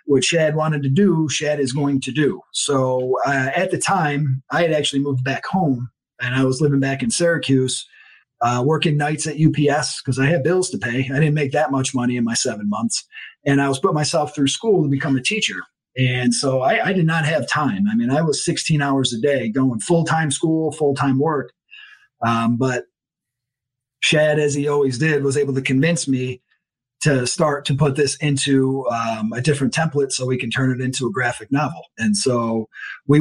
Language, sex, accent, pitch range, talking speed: English, male, American, 130-160 Hz, 210 wpm